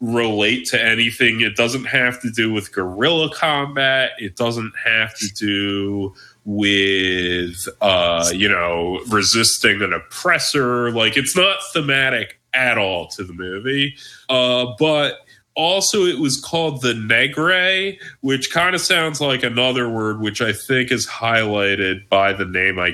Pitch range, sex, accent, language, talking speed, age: 100-135 Hz, male, American, English, 145 wpm, 30-49